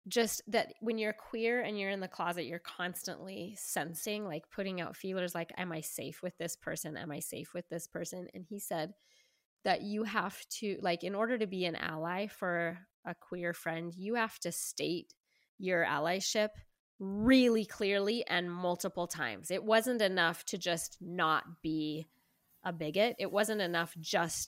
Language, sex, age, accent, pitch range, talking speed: English, female, 20-39, American, 175-225 Hz, 175 wpm